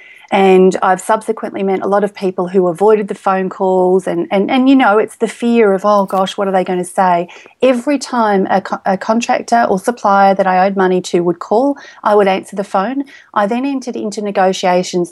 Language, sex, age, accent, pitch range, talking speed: English, female, 30-49, Australian, 190-225 Hz, 220 wpm